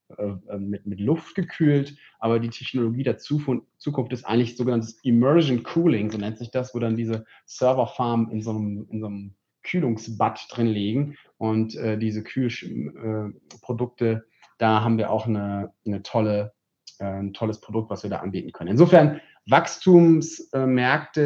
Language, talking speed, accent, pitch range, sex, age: German, 150 wpm, German, 115-145 Hz, male, 30-49